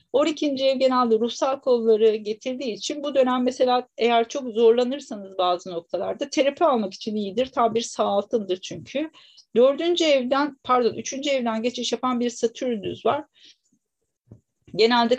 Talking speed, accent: 140 wpm, native